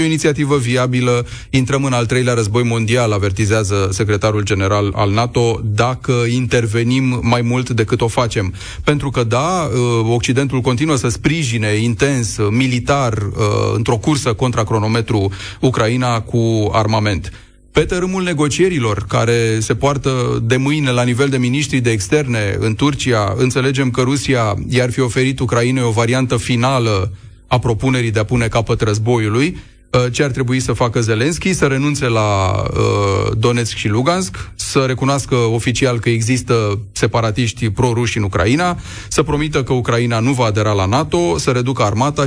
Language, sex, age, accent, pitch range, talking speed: Romanian, male, 30-49, native, 110-130 Hz, 150 wpm